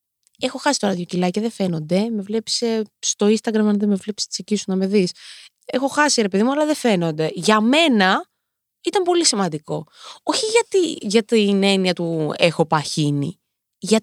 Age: 20-39